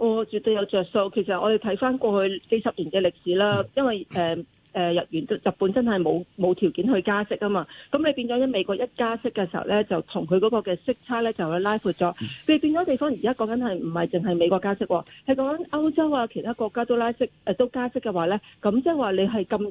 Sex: female